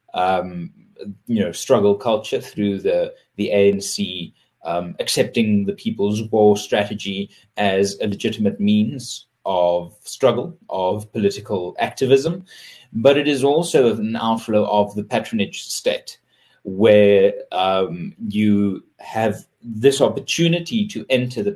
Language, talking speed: English, 120 wpm